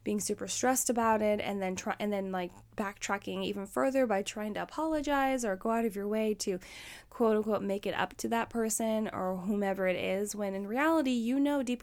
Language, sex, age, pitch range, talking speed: English, female, 10-29, 195-245 Hz, 220 wpm